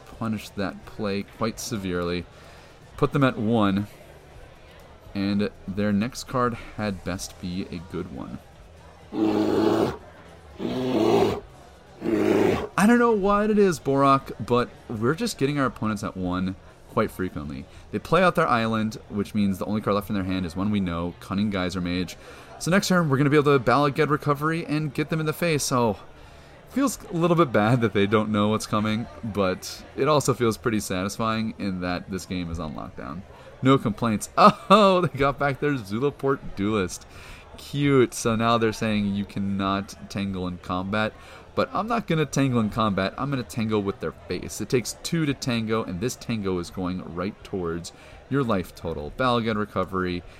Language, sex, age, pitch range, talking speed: English, male, 30-49, 90-135 Hz, 175 wpm